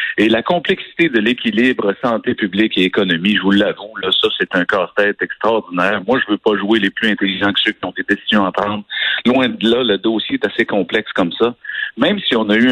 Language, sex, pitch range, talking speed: French, male, 100-130 Hz, 230 wpm